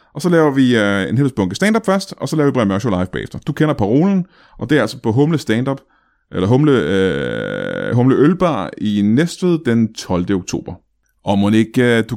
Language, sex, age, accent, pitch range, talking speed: Danish, male, 30-49, native, 100-145 Hz, 200 wpm